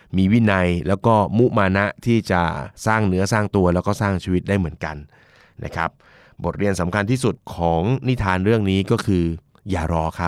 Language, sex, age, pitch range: Thai, male, 30-49, 95-125 Hz